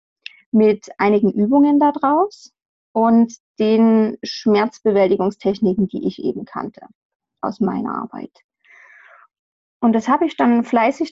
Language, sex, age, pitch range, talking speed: German, female, 30-49, 205-250 Hz, 110 wpm